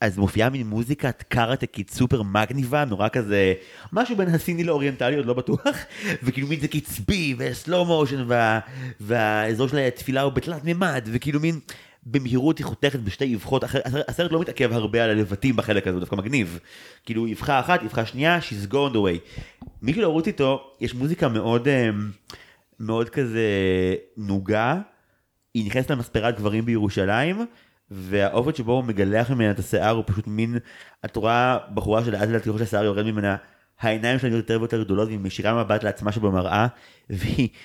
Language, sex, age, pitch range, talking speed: Hebrew, male, 30-49, 105-130 Hz, 160 wpm